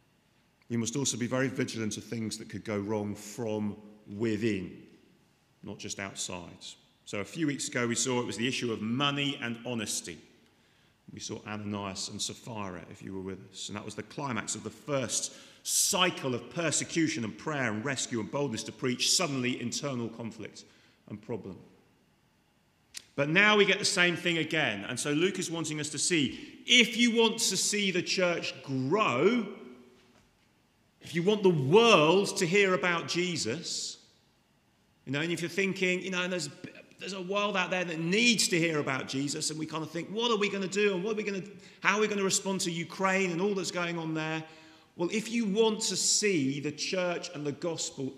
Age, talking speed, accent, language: 40-59, 200 wpm, British, English